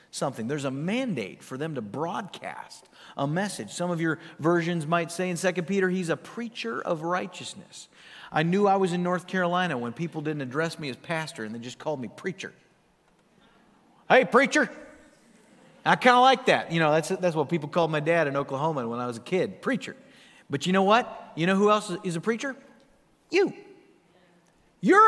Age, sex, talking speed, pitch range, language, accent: 40-59, male, 195 wpm, 165-225 Hz, English, American